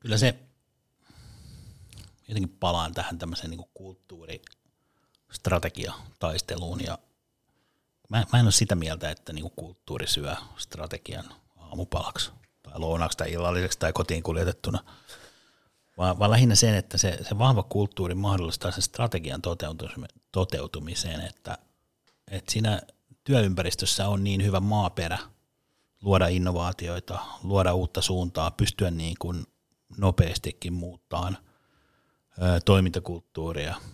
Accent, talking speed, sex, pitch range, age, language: native, 105 wpm, male, 85-100 Hz, 60-79, Finnish